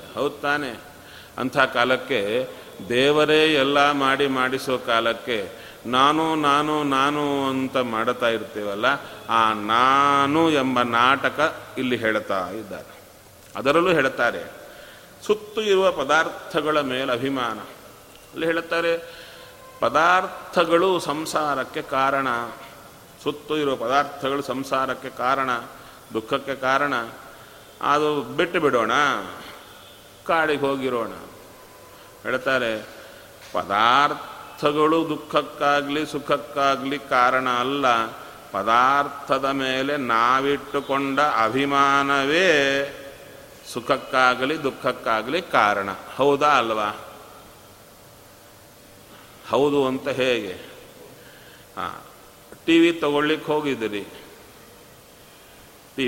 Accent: native